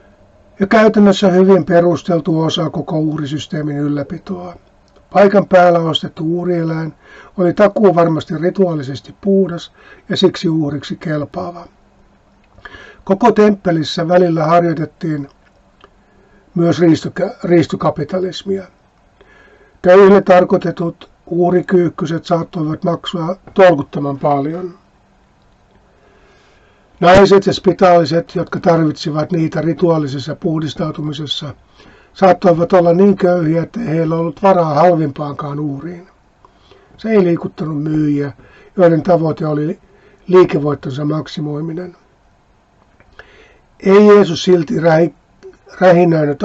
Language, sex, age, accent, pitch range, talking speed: Finnish, male, 50-69, native, 150-185 Hz, 85 wpm